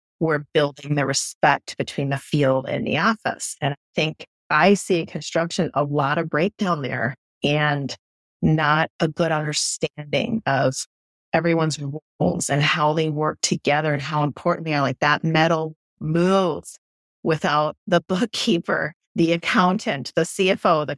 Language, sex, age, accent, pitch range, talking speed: English, female, 30-49, American, 150-180 Hz, 150 wpm